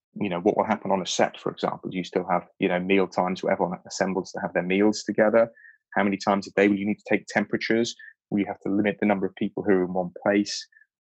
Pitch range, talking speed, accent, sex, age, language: 95-110 Hz, 275 wpm, British, male, 20-39, English